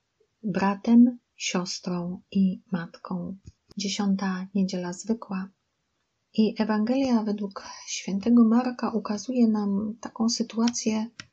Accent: native